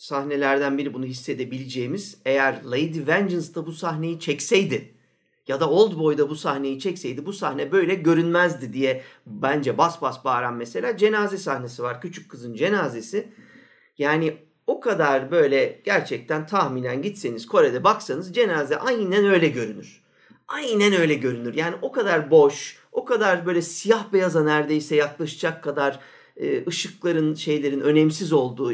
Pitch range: 145-205 Hz